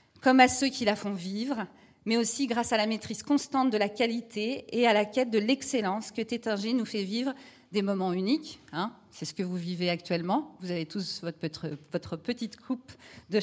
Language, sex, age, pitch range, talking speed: French, female, 40-59, 200-250 Hz, 205 wpm